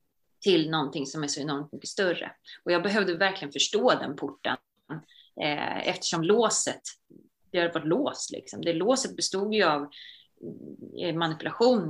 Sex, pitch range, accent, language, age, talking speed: female, 155-195 Hz, native, Swedish, 30-49, 145 wpm